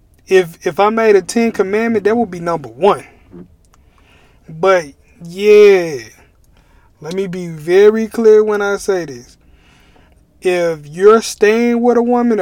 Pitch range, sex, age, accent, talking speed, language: 155-210 Hz, male, 20-39, American, 140 wpm, English